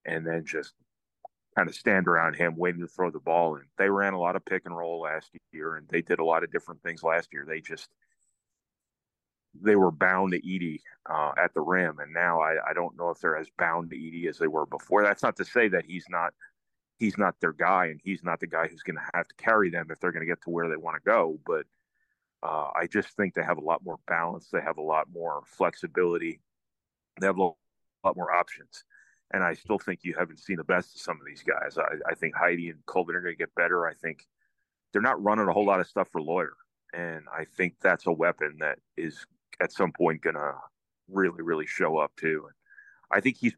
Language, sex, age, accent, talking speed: English, male, 30-49, American, 245 wpm